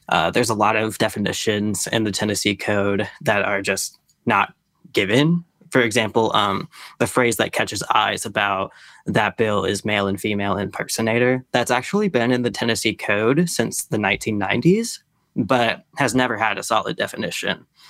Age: 20-39